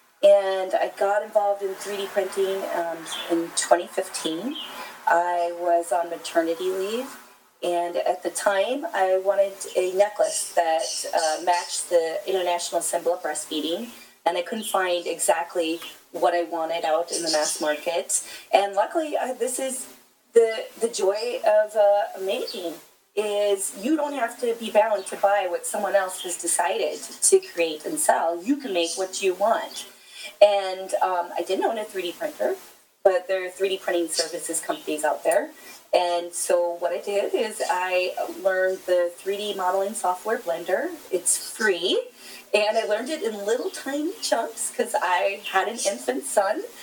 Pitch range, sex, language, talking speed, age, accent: 175-230 Hz, female, English, 160 wpm, 30-49, American